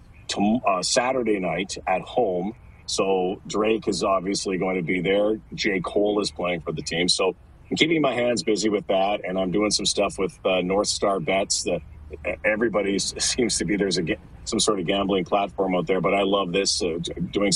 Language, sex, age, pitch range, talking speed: English, male, 40-59, 95-115 Hz, 200 wpm